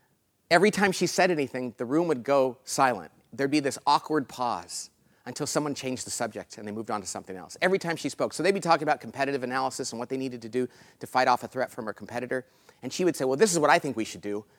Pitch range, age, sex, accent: 115-150 Hz, 40-59, male, American